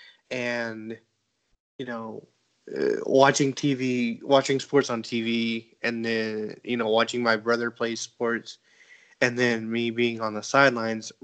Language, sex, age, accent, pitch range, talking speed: English, male, 20-39, American, 115-130 Hz, 140 wpm